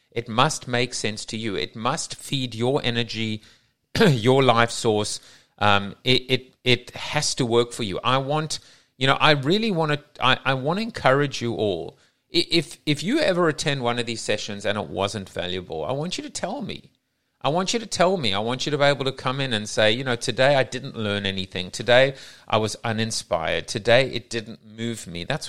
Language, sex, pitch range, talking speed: English, male, 110-140 Hz, 215 wpm